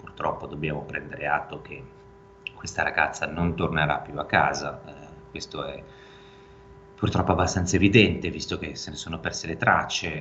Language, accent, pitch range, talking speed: Italian, native, 75-85 Hz, 155 wpm